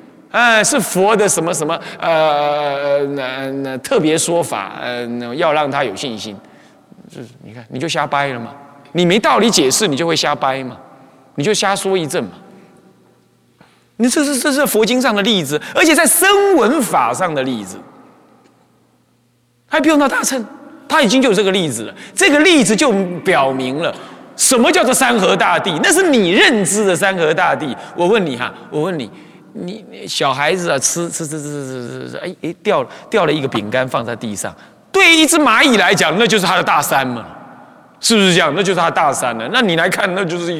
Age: 30-49